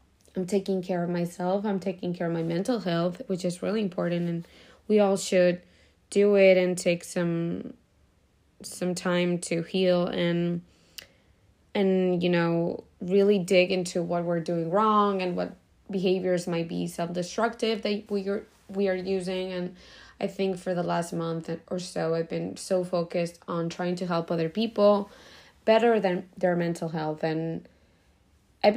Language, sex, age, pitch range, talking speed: English, female, 20-39, 165-195 Hz, 165 wpm